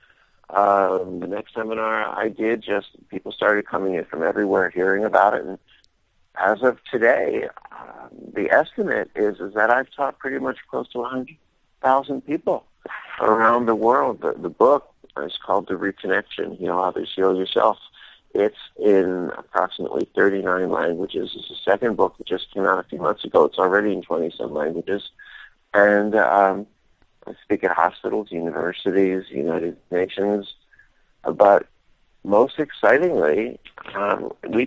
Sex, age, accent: male, 50-69, American